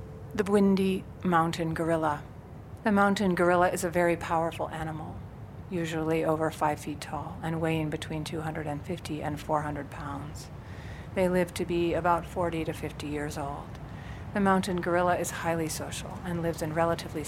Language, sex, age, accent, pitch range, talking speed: English, female, 40-59, American, 150-175 Hz, 155 wpm